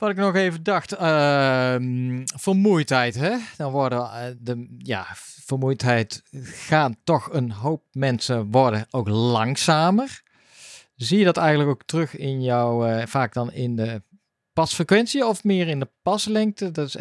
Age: 40-59